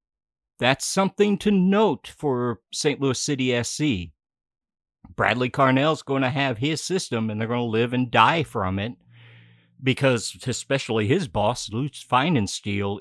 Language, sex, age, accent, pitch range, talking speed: English, male, 50-69, American, 105-140 Hz, 145 wpm